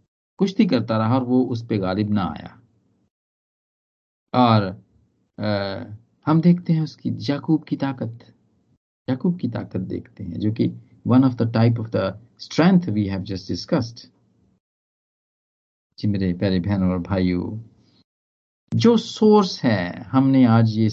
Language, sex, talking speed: Hindi, male, 130 wpm